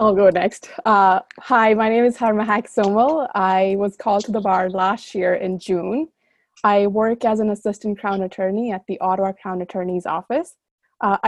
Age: 20-39